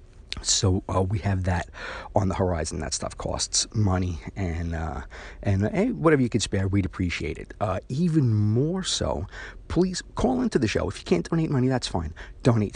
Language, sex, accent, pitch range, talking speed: English, male, American, 90-100 Hz, 190 wpm